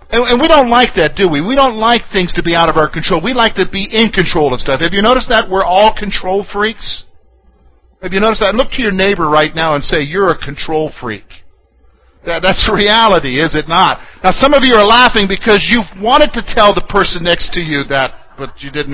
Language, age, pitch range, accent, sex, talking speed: English, 50-69, 145-225 Hz, American, male, 235 wpm